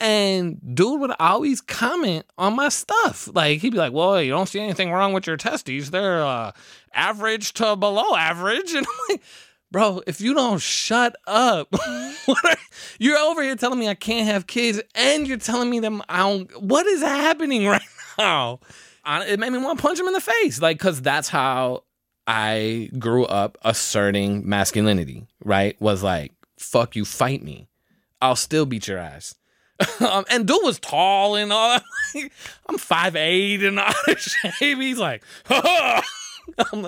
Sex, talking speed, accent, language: male, 170 wpm, American, English